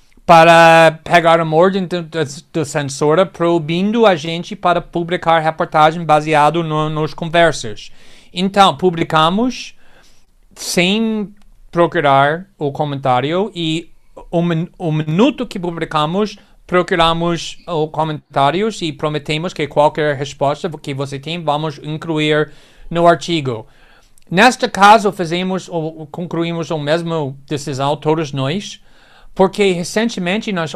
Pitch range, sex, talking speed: 155-195 Hz, male, 110 wpm